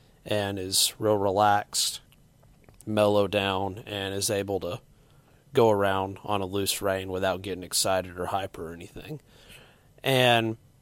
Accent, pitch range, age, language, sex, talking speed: American, 105-130 Hz, 30-49, English, male, 135 wpm